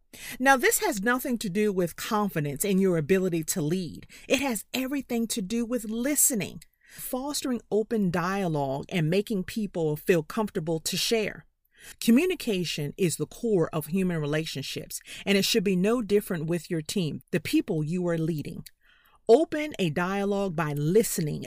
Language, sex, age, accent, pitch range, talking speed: English, female, 40-59, American, 170-230 Hz, 155 wpm